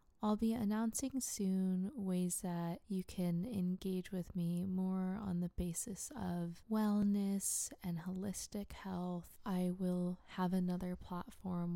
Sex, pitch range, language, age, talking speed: female, 175-190 Hz, English, 20-39, 130 wpm